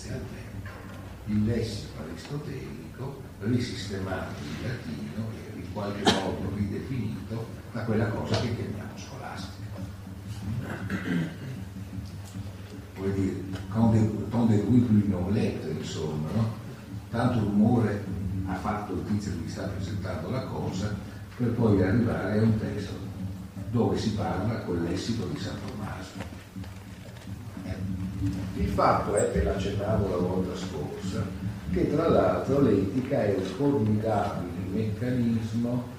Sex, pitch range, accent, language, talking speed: male, 95-110 Hz, native, Italian, 120 wpm